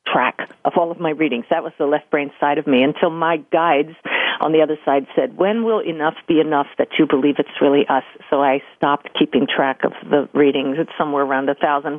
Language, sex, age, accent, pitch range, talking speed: English, female, 50-69, American, 150-220 Hz, 230 wpm